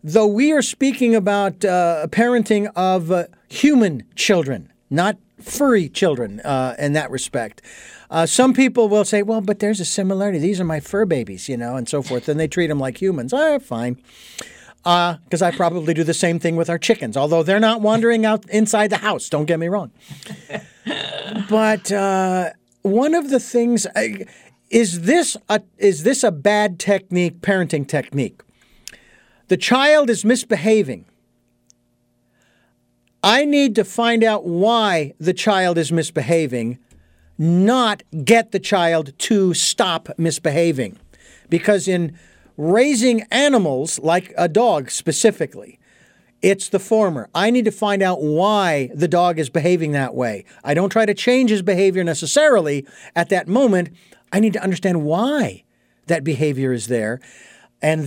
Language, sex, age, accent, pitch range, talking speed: English, male, 50-69, American, 160-215 Hz, 155 wpm